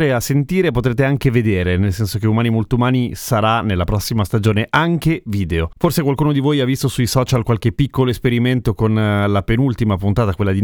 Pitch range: 105-130 Hz